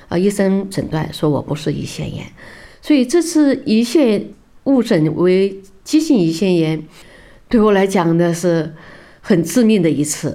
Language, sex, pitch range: Chinese, female, 170-235 Hz